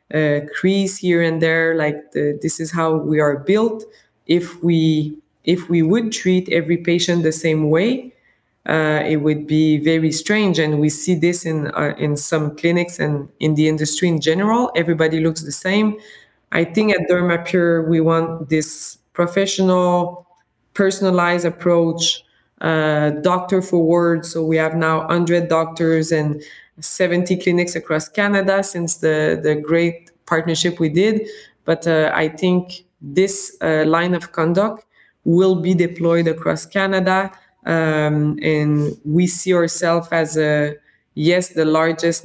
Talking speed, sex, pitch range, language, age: 150 wpm, female, 155-180 Hz, English, 20-39